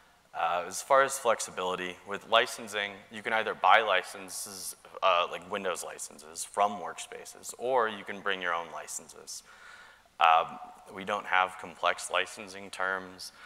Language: English